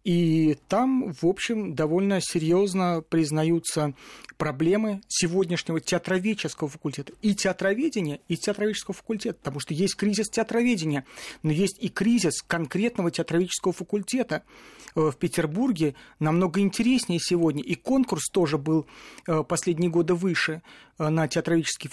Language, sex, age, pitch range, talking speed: Russian, male, 40-59, 160-205 Hz, 115 wpm